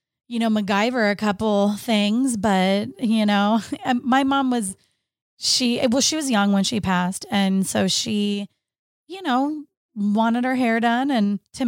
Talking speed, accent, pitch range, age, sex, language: 160 wpm, American, 195-235 Hz, 20-39, female, English